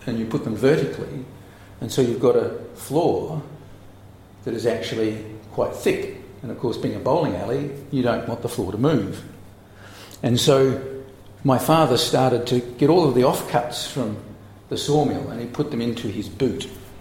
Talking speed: 180 wpm